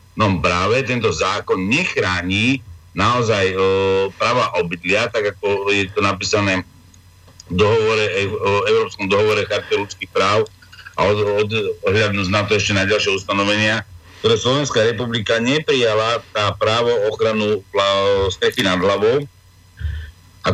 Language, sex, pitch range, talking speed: Slovak, male, 95-130 Hz, 130 wpm